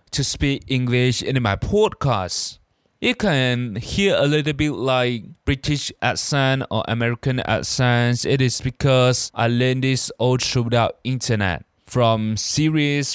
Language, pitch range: Chinese, 110-135 Hz